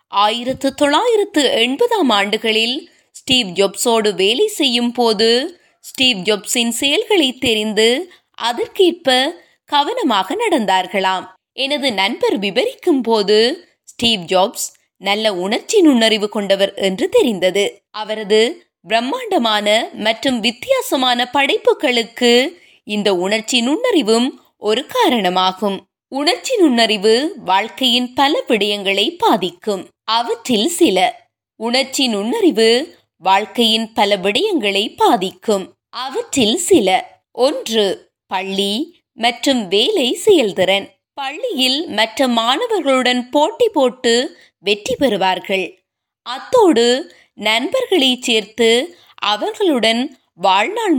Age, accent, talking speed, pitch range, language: 20-39, native, 80 wpm, 215-315 Hz, Tamil